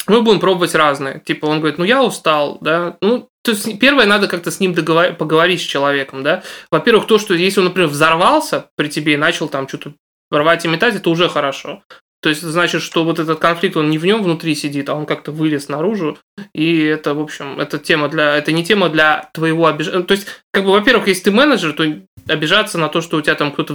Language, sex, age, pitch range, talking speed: Russian, male, 20-39, 150-185 Hz, 225 wpm